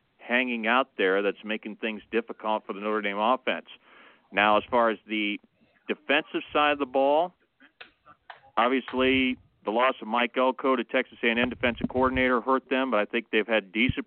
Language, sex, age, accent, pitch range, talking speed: English, male, 40-59, American, 115-130 Hz, 180 wpm